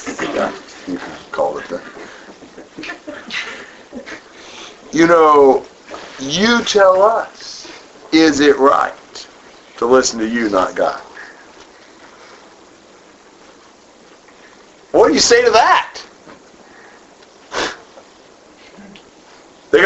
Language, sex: English, male